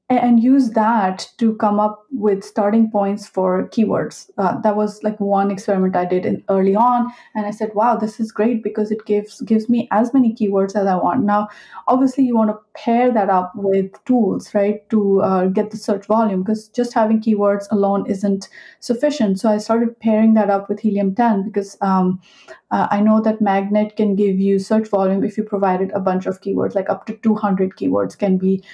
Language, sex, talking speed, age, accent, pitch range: English, female, 205 wpm, 30-49, Indian, 195-225 Hz